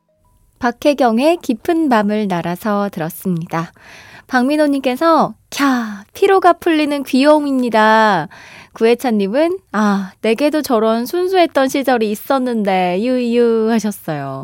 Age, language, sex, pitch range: 20-39, Korean, female, 195-295 Hz